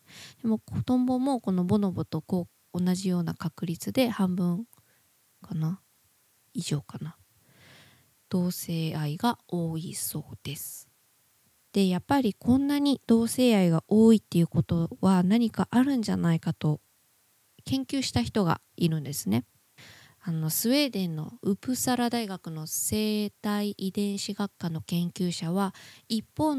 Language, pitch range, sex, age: Japanese, 165-230 Hz, female, 20-39